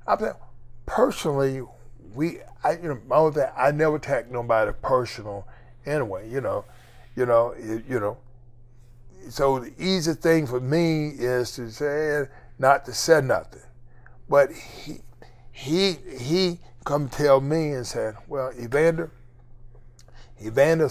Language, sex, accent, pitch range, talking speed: English, male, American, 120-145 Hz, 135 wpm